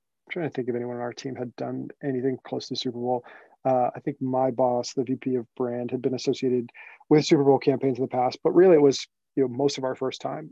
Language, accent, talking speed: English, American, 270 wpm